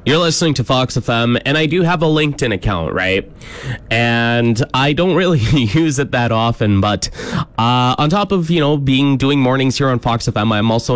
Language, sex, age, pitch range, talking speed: English, male, 20-39, 105-150 Hz, 205 wpm